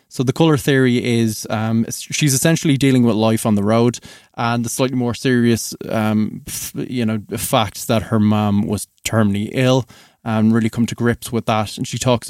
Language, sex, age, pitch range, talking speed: English, male, 20-39, 115-135 Hz, 190 wpm